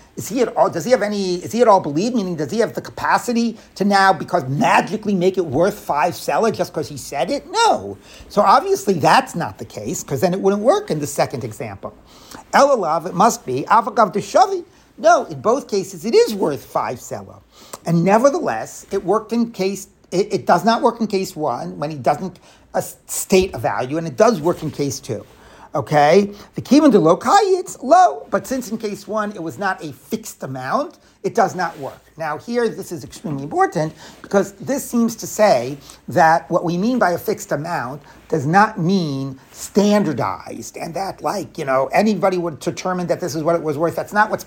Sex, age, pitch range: male, 50-69, 155-220 Hz